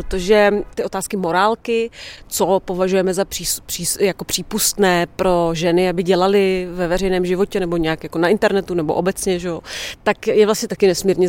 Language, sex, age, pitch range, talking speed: Czech, female, 30-49, 175-195 Hz, 165 wpm